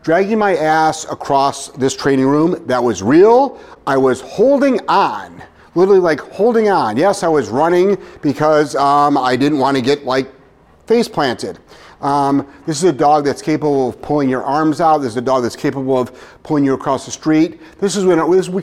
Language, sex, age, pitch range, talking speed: English, male, 40-59, 140-180 Hz, 195 wpm